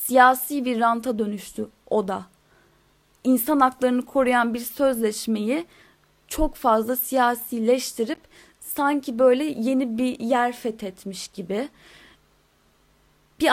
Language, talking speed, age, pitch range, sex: Turkish, 100 wpm, 10-29, 220-280 Hz, female